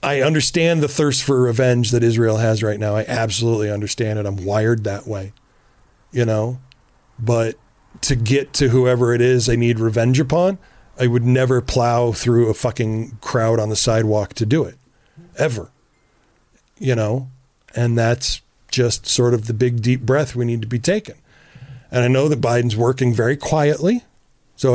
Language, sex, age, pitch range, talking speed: English, male, 40-59, 115-140 Hz, 175 wpm